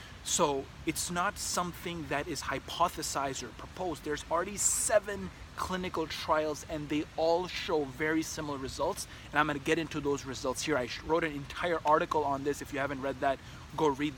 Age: 30-49